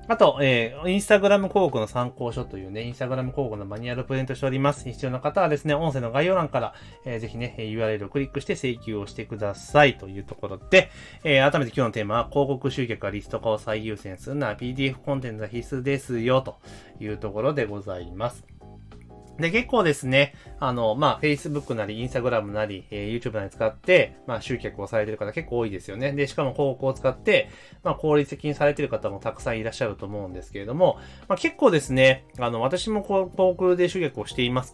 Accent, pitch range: native, 105-145 Hz